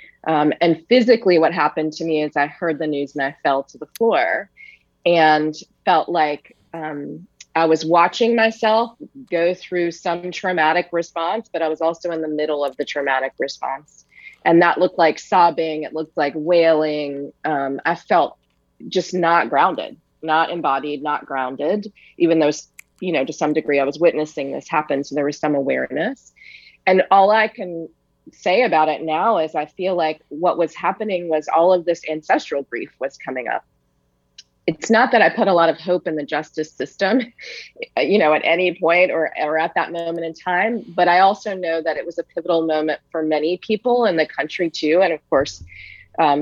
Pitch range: 150-180 Hz